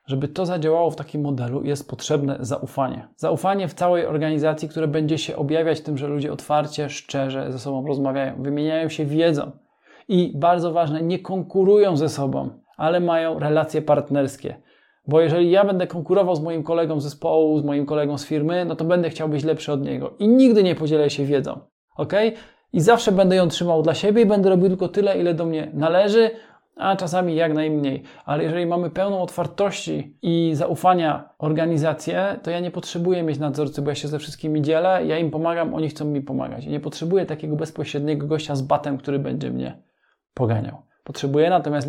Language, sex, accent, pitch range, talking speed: Polish, male, native, 145-175 Hz, 185 wpm